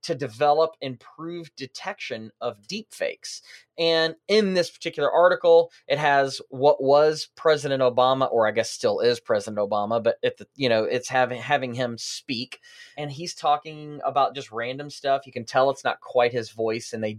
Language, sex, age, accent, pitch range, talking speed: English, male, 30-49, American, 120-165 Hz, 180 wpm